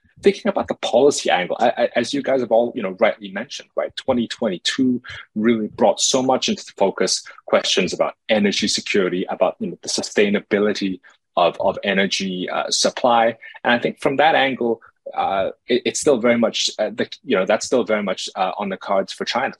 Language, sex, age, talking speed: English, male, 20-39, 200 wpm